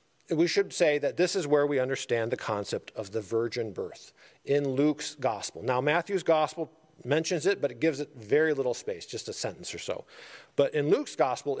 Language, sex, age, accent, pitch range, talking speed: English, male, 40-59, American, 130-180 Hz, 200 wpm